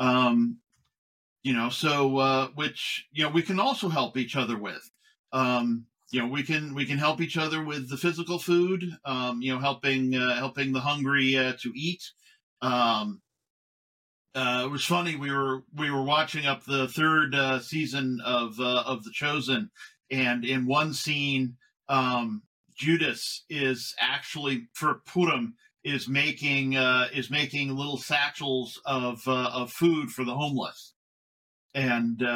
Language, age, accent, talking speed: English, 50-69, American, 160 wpm